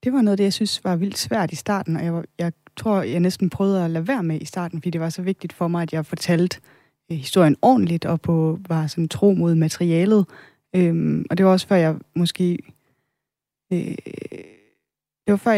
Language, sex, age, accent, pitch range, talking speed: Danish, female, 20-39, native, 160-190 Hz, 210 wpm